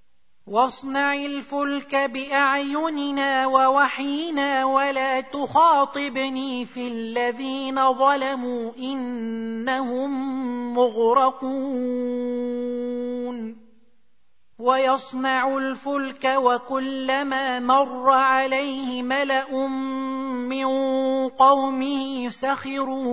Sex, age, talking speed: male, 30-49, 50 wpm